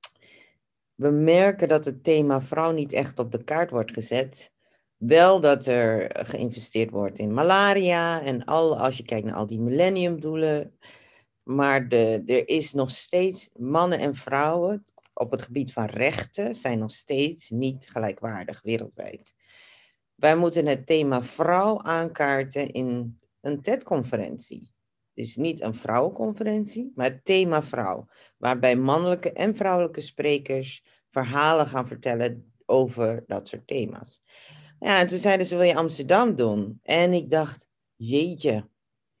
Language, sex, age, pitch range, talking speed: Dutch, female, 50-69, 125-175 Hz, 140 wpm